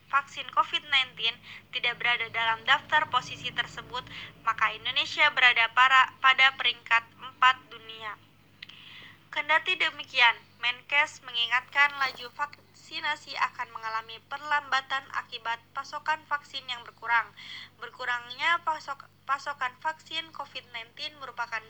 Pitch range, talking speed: 235-290 Hz, 100 wpm